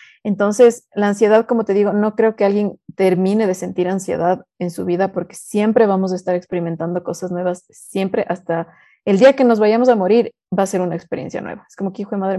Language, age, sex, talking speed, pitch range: Spanish, 30-49, female, 225 wpm, 180-210 Hz